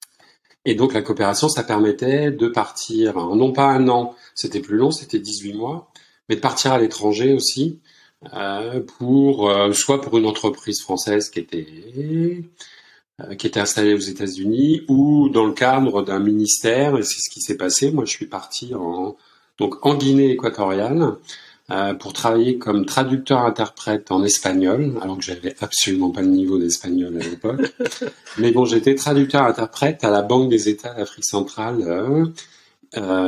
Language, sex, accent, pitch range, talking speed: English, male, French, 105-135 Hz, 165 wpm